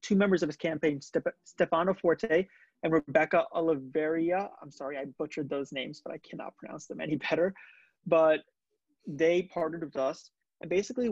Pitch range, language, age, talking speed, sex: 150-170 Hz, English, 30-49, 160 wpm, male